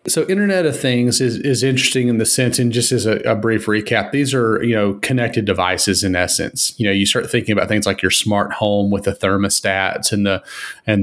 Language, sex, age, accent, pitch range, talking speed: English, male, 30-49, American, 95-110 Hz, 230 wpm